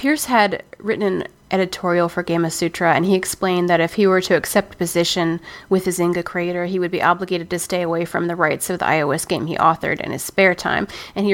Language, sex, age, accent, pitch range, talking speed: English, female, 30-49, American, 165-190 Hz, 230 wpm